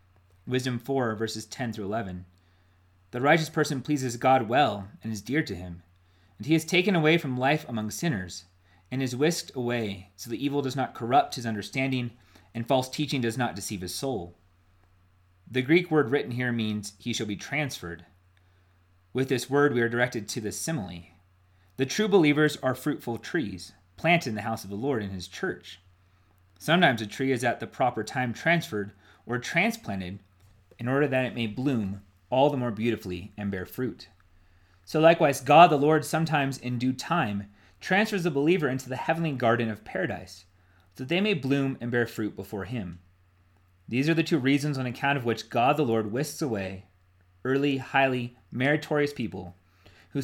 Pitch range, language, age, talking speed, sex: 95-140 Hz, English, 30-49, 180 wpm, male